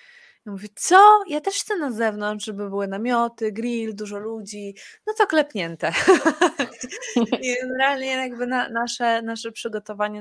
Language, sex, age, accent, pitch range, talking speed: Polish, female, 20-39, native, 190-230 Hz, 130 wpm